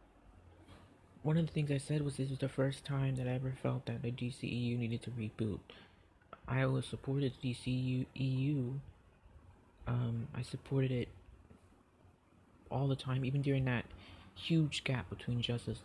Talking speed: 150 wpm